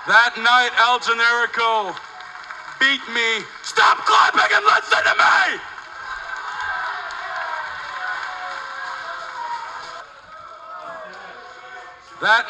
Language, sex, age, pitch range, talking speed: English, male, 40-59, 235-315 Hz, 60 wpm